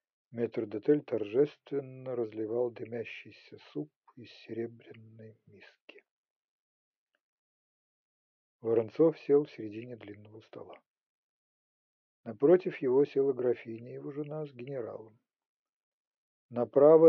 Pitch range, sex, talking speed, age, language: 115-165 Hz, male, 85 wpm, 50-69, Ukrainian